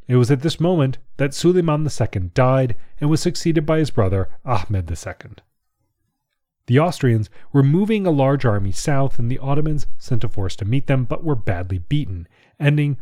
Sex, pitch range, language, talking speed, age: male, 105-145 Hz, English, 180 wpm, 30-49